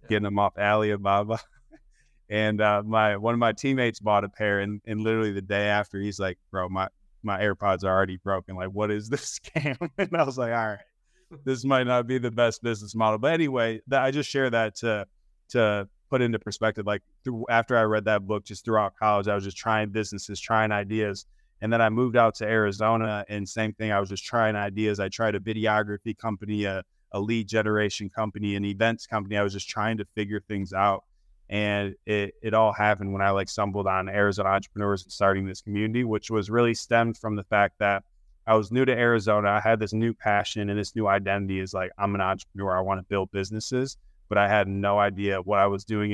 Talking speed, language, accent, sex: 220 wpm, English, American, male